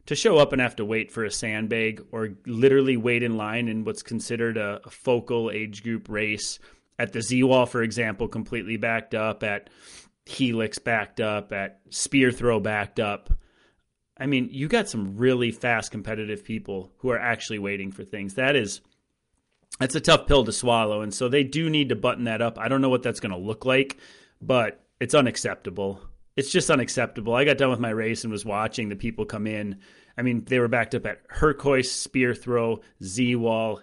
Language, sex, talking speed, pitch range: English, male, 200 wpm, 110-130 Hz